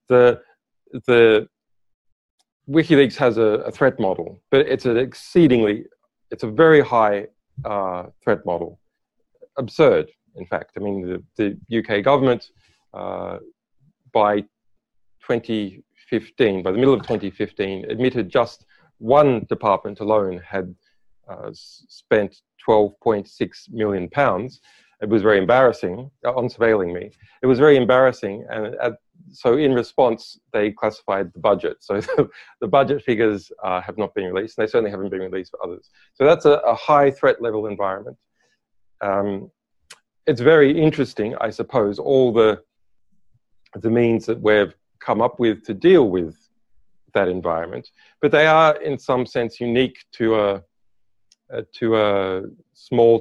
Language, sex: English, male